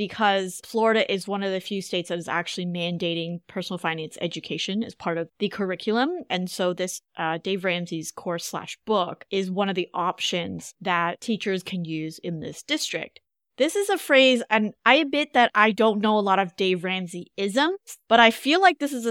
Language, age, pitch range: English, 20-39, 185-235 Hz